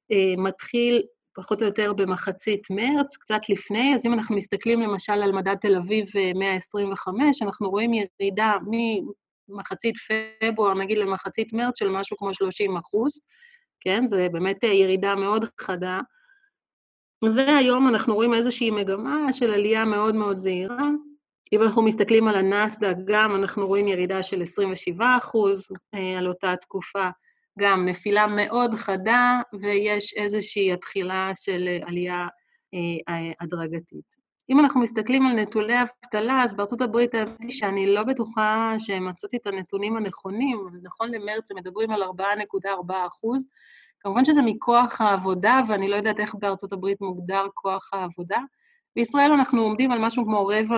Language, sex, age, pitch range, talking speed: Hebrew, female, 30-49, 195-230 Hz, 145 wpm